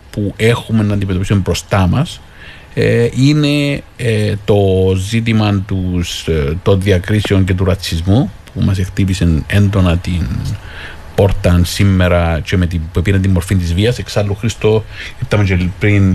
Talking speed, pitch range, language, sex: 130 wpm, 90-110 Hz, Greek, male